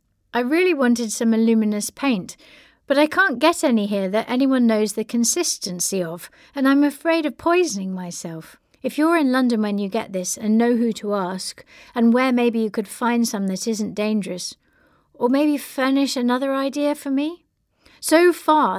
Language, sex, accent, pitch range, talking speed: English, female, British, 190-255 Hz, 180 wpm